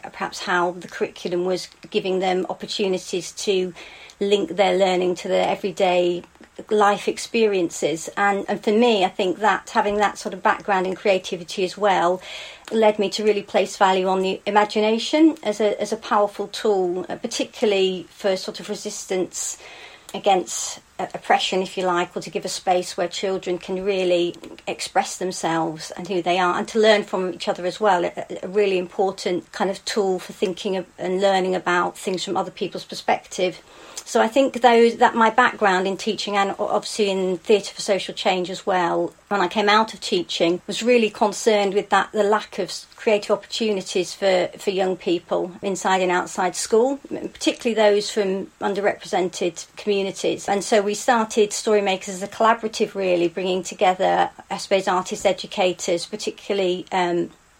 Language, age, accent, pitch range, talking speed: English, 50-69, British, 185-210 Hz, 170 wpm